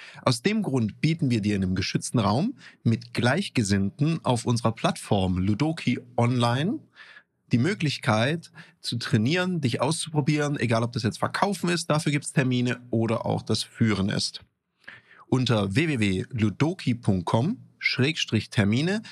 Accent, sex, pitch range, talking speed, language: German, male, 115-165 Hz, 125 wpm, German